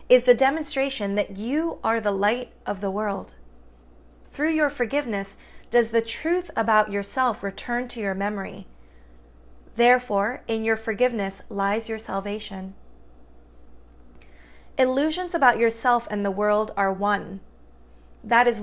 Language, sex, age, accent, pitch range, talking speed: English, female, 30-49, American, 195-250 Hz, 130 wpm